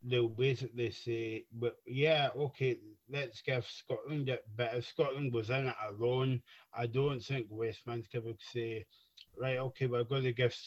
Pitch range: 115-130 Hz